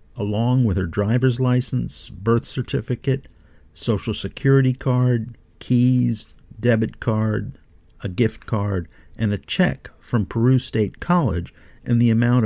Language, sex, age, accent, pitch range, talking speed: English, male, 50-69, American, 90-125 Hz, 125 wpm